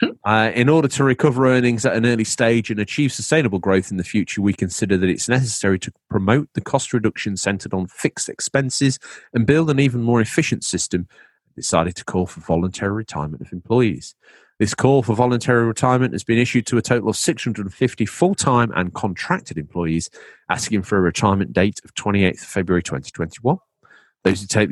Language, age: English, 30-49